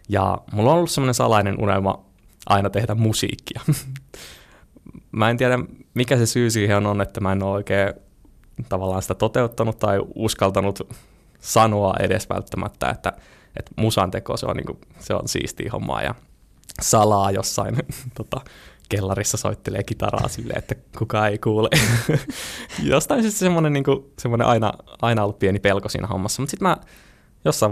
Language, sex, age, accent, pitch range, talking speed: Finnish, male, 20-39, native, 100-120 Hz, 145 wpm